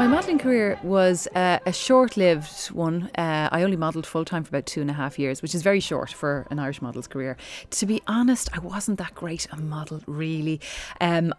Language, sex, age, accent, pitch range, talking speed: English, female, 30-49, Irish, 145-170 Hz, 220 wpm